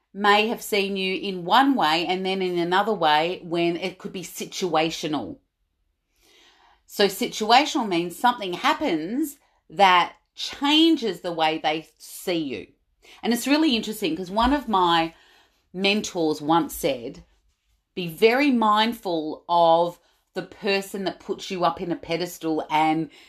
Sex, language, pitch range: female, English, 170-245 Hz